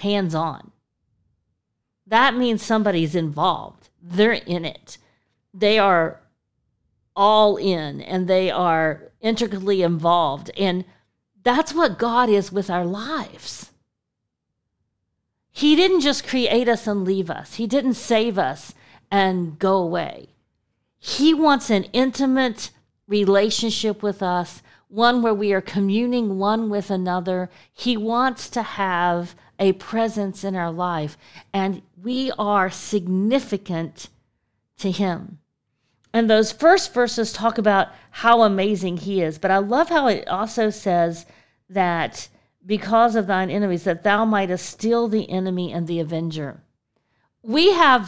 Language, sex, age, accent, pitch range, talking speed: English, female, 40-59, American, 175-225 Hz, 130 wpm